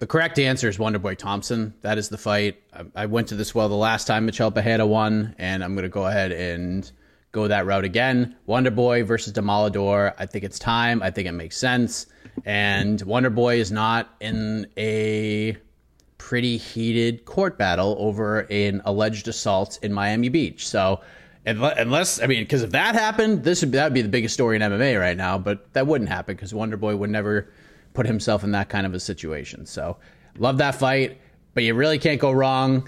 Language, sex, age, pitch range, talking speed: English, male, 30-49, 105-140 Hz, 205 wpm